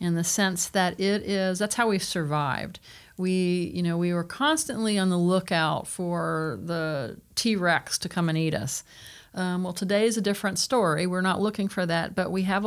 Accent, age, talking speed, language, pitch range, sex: American, 40-59, 205 wpm, English, 175-215 Hz, female